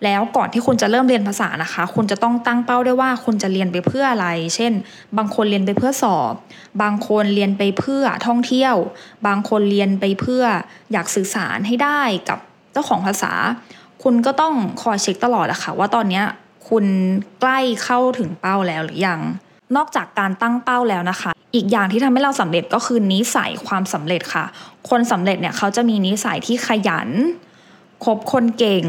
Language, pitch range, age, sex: English, 190-240 Hz, 10-29, female